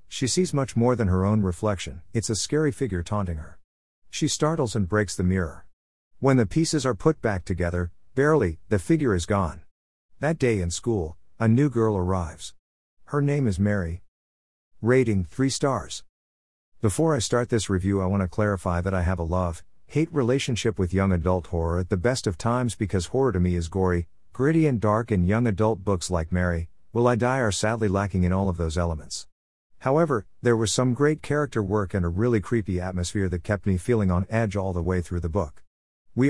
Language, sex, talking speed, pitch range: English, male, 205 wpm, 90-115 Hz